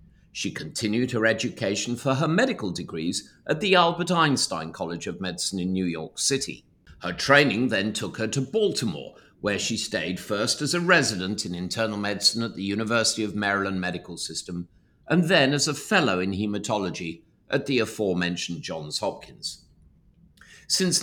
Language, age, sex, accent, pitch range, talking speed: English, 50-69, male, British, 95-140 Hz, 160 wpm